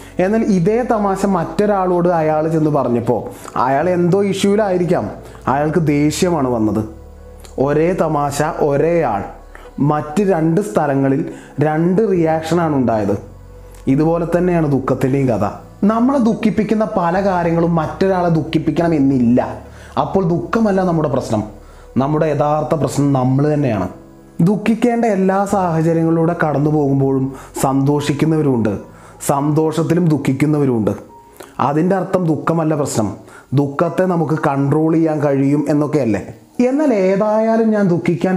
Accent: native